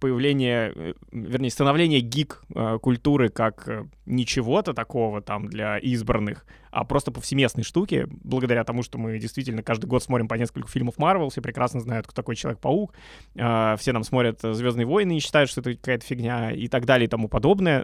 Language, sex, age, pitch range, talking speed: Russian, male, 20-39, 120-150 Hz, 165 wpm